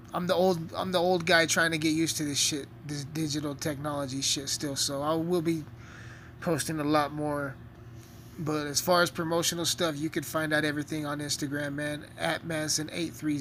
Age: 20-39